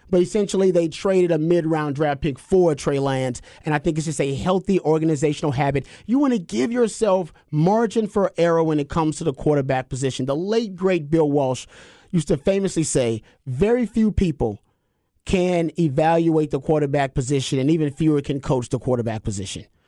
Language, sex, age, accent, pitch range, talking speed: English, male, 30-49, American, 155-215 Hz, 180 wpm